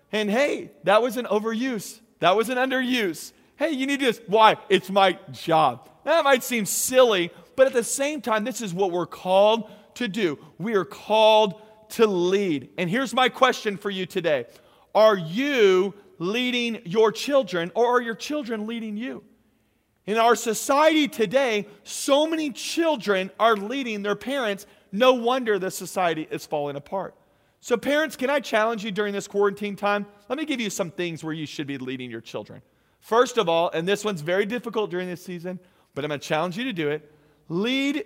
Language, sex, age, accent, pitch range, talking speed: English, male, 40-59, American, 170-225 Hz, 190 wpm